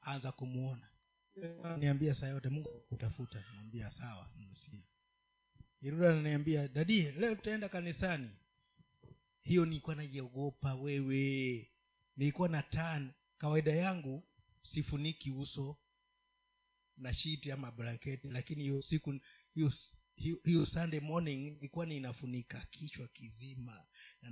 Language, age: Swahili, 50-69